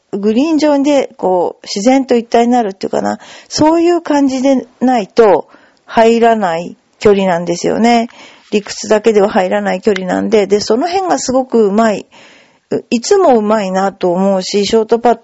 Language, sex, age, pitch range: Japanese, female, 40-59, 190-245 Hz